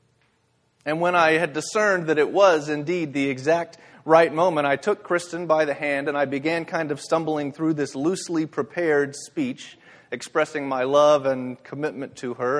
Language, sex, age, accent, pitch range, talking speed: English, male, 30-49, American, 140-165 Hz, 175 wpm